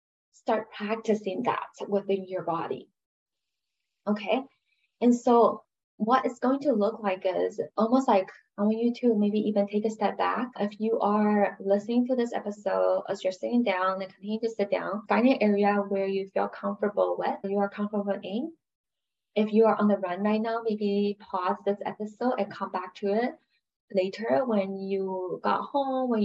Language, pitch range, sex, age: English, 195-225 Hz, female, 20-39